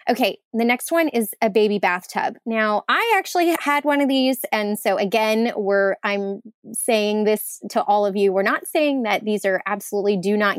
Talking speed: 195 wpm